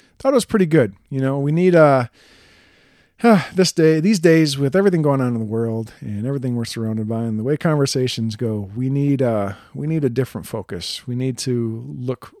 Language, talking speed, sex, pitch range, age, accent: English, 215 wpm, male, 115-140 Hz, 40-59, American